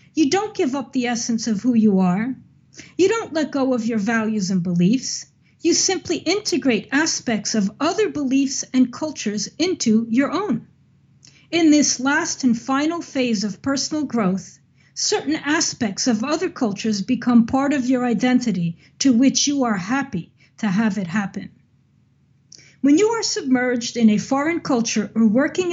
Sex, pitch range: female, 220-305 Hz